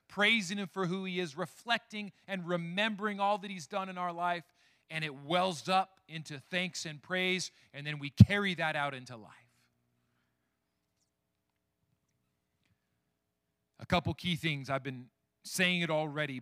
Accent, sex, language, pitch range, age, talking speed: American, male, English, 115-170 Hz, 40-59, 150 wpm